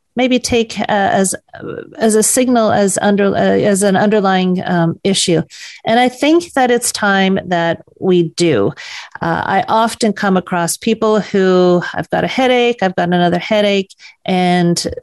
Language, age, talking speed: English, 40-59, 165 wpm